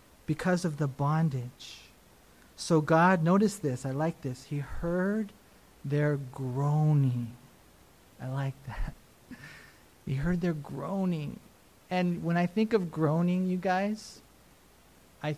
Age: 40-59